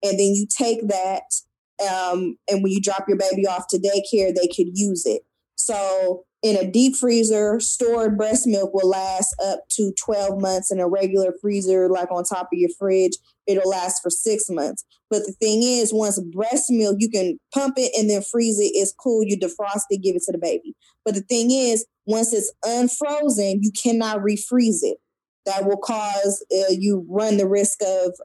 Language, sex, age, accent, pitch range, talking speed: English, female, 20-39, American, 195-235 Hz, 200 wpm